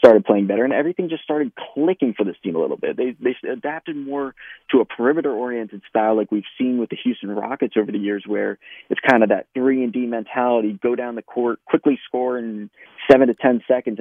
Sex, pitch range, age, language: male, 105-145 Hz, 20-39, English